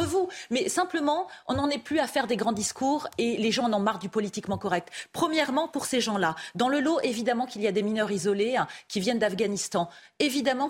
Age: 30-49